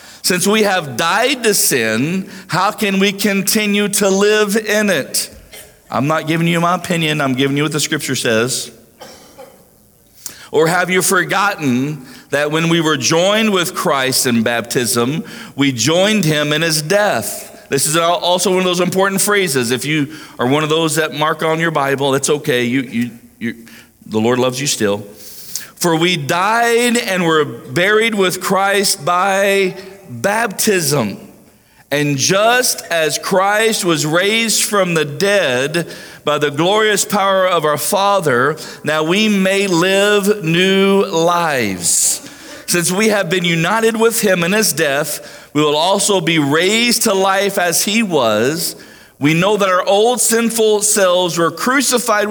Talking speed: 155 wpm